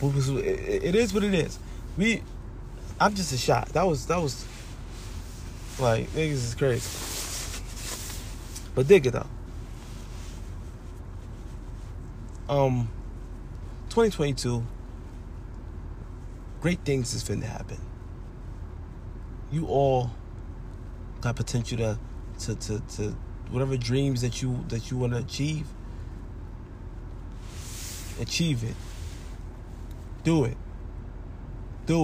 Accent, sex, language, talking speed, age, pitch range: American, male, English, 95 wpm, 30-49, 90-120 Hz